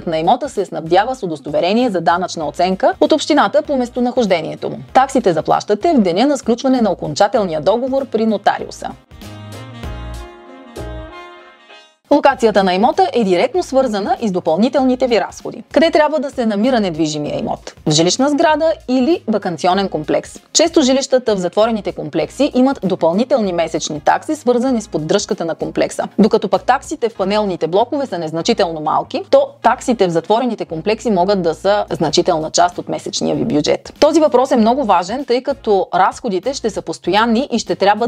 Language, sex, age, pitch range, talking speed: Bulgarian, female, 30-49, 170-260 Hz, 155 wpm